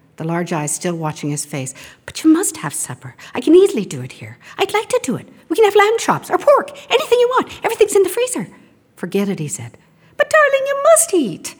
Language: English